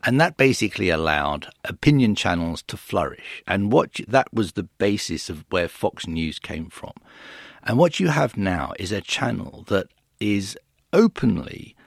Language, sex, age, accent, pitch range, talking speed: English, male, 50-69, British, 85-115 Hz, 150 wpm